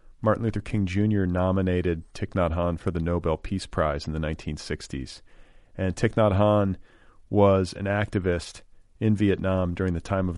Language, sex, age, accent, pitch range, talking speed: English, male, 40-59, American, 85-105 Hz, 170 wpm